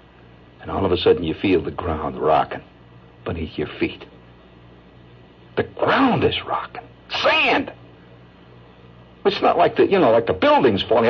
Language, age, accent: English, 60-79, American